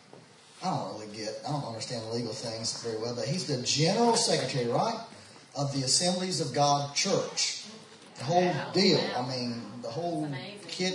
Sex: male